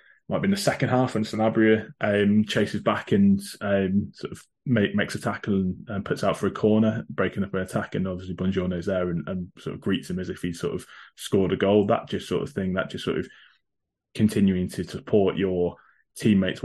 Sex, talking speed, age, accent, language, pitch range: male, 225 wpm, 20-39, British, English, 90-110 Hz